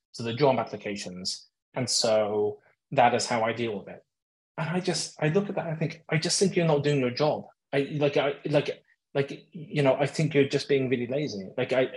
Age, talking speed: 20-39, 235 wpm